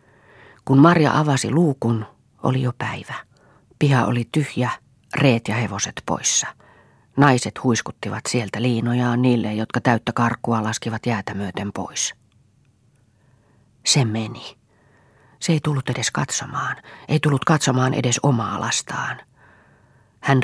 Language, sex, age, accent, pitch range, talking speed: Finnish, female, 40-59, native, 115-135 Hz, 115 wpm